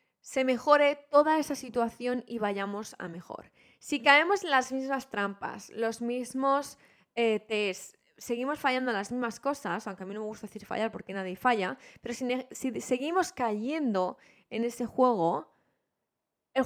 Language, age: Spanish, 20-39